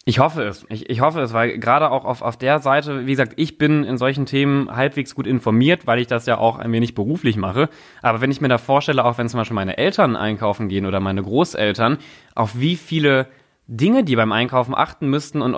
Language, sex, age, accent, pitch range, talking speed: German, male, 20-39, German, 115-140 Hz, 230 wpm